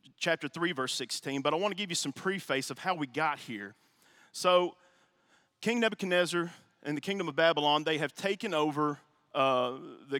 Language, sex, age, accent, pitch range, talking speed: English, male, 40-59, American, 140-175 Hz, 180 wpm